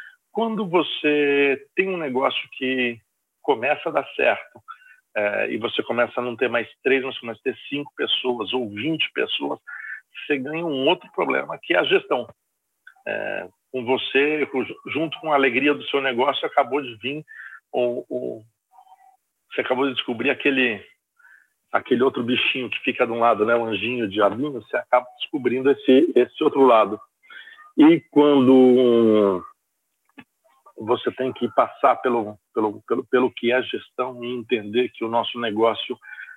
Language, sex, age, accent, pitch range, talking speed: Portuguese, male, 50-69, Brazilian, 120-150 Hz, 160 wpm